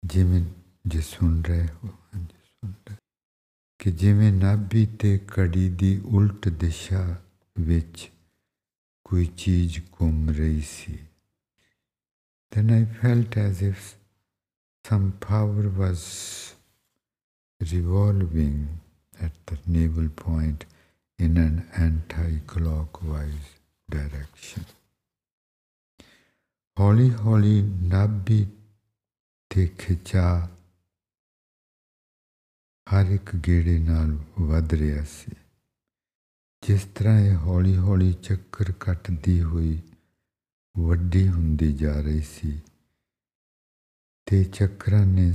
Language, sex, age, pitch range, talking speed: English, male, 60-79, 80-100 Hz, 70 wpm